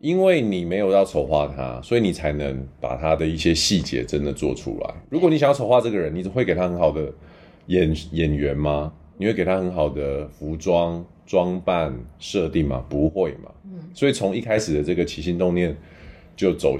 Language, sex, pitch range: Chinese, male, 75-95 Hz